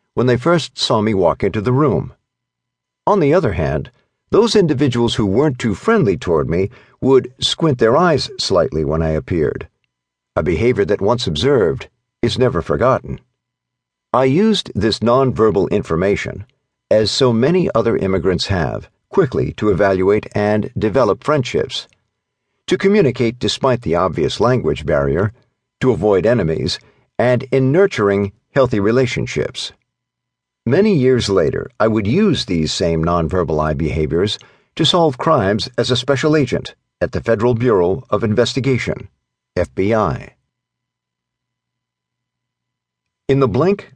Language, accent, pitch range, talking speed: English, American, 105-130 Hz, 130 wpm